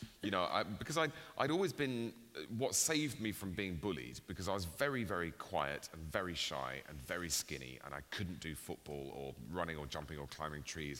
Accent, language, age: British, English, 30-49